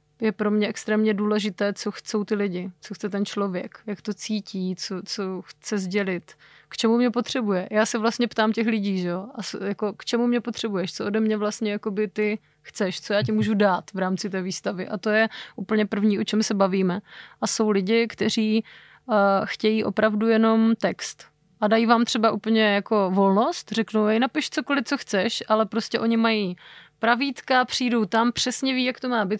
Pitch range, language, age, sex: 200-225 Hz, Czech, 20-39, female